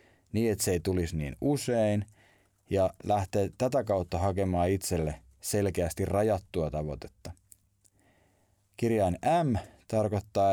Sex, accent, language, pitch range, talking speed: male, native, Finnish, 90-115 Hz, 105 wpm